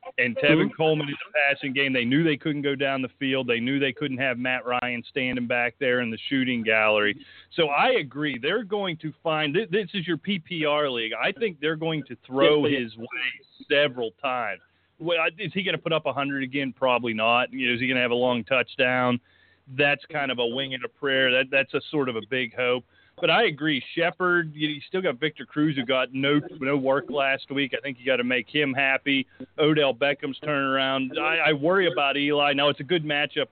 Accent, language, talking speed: American, English, 215 wpm